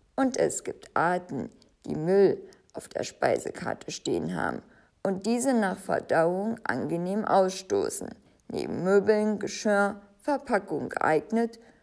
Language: German